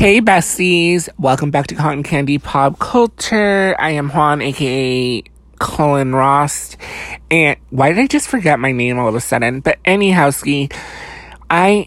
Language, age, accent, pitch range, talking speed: English, 30-49, American, 120-165 Hz, 150 wpm